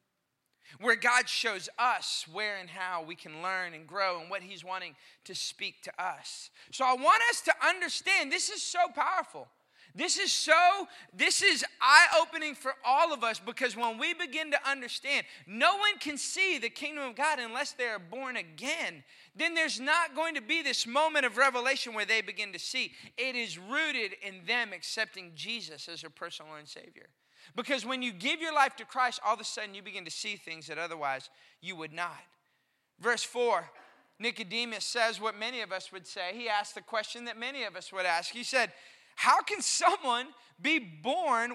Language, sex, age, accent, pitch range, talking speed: English, male, 20-39, American, 205-285 Hz, 195 wpm